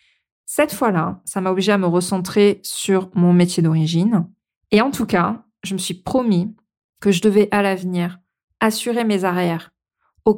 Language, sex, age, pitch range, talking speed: French, female, 20-39, 180-210 Hz, 170 wpm